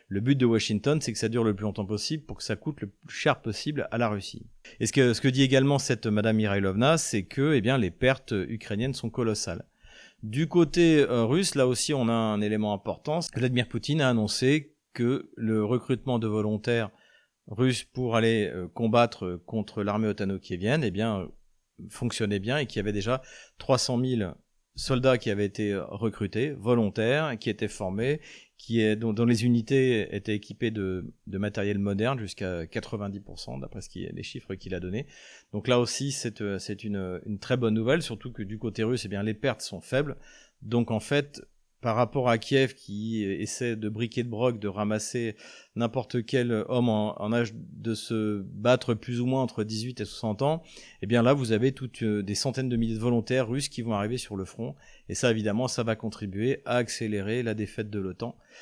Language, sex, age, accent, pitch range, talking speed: French, male, 40-59, French, 105-125 Hz, 205 wpm